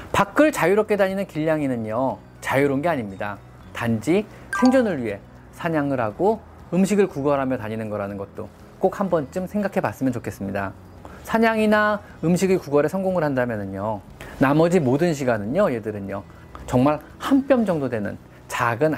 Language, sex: Korean, male